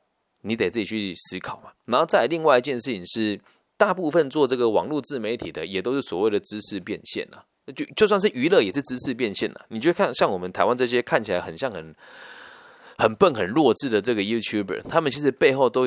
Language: Chinese